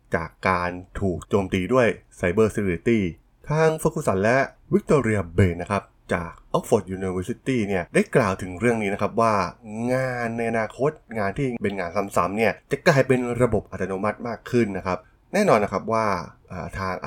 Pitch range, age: 95-120 Hz, 20-39